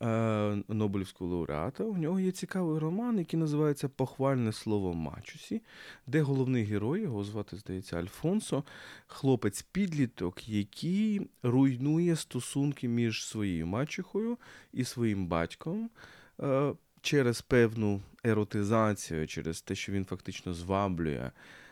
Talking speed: 105 wpm